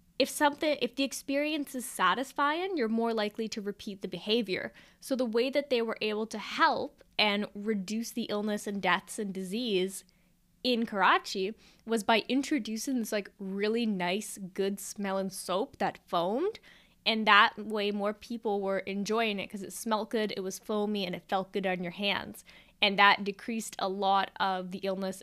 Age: 10-29